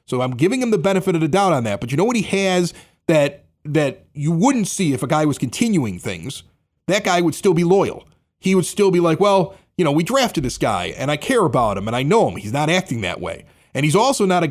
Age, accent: 30-49, American